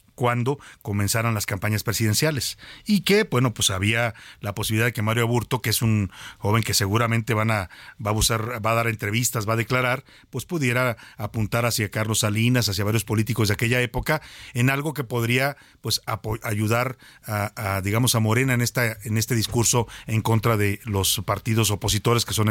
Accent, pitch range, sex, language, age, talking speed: Mexican, 110-140 Hz, male, Spanish, 40-59, 190 wpm